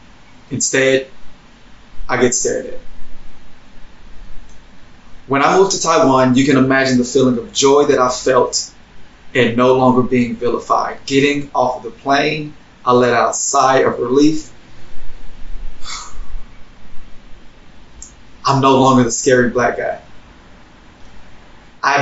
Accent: American